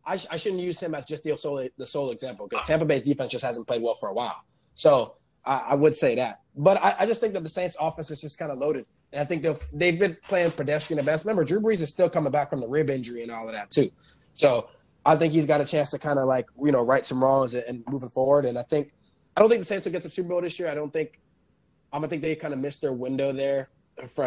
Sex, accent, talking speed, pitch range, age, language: male, American, 295 wpm, 130-160 Hz, 20-39, English